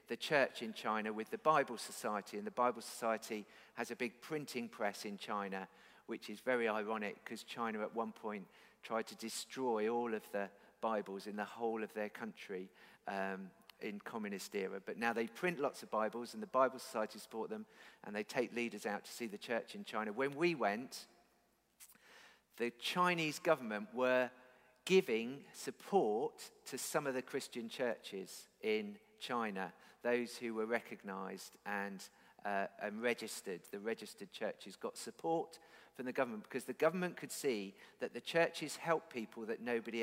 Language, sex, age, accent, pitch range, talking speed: English, male, 50-69, British, 110-140 Hz, 170 wpm